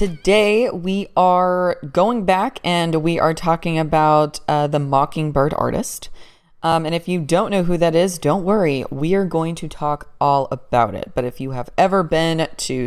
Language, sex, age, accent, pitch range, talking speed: English, female, 20-39, American, 150-190 Hz, 185 wpm